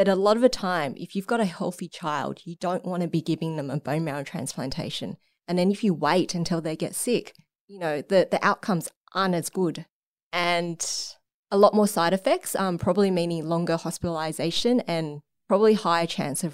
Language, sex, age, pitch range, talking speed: English, female, 20-39, 160-195 Hz, 205 wpm